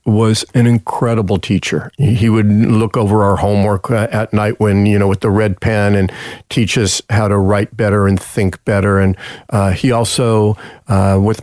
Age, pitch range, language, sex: 50-69, 100-115 Hz, English, male